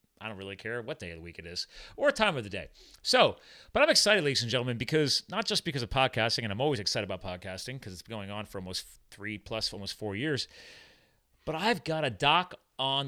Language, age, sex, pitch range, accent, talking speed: English, 40-59, male, 105-150 Hz, American, 240 wpm